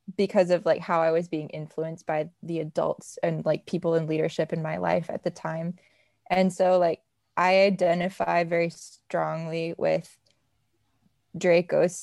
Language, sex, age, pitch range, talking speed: English, female, 20-39, 165-185 Hz, 155 wpm